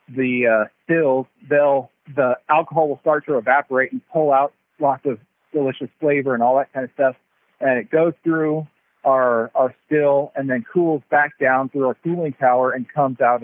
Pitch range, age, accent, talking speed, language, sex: 130-155 Hz, 40-59, American, 190 wpm, English, male